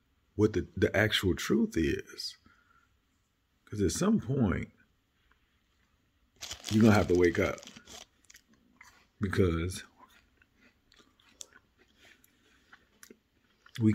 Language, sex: English, male